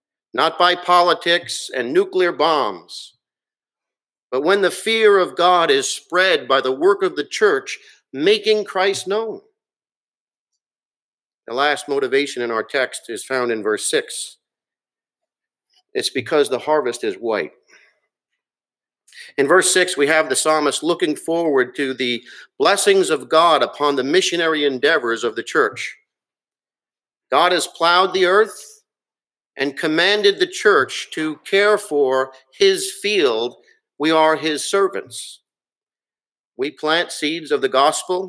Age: 50-69